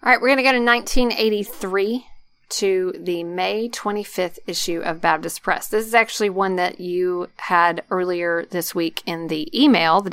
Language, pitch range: English, 180-220 Hz